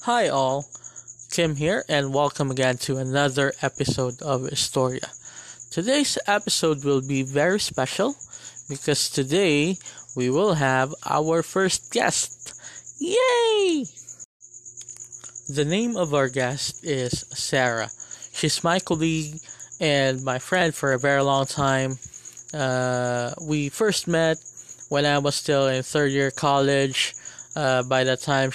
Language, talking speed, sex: English, 130 wpm, male